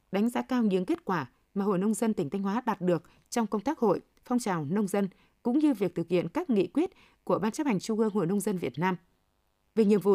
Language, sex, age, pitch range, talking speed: Vietnamese, female, 20-39, 185-235 Hz, 265 wpm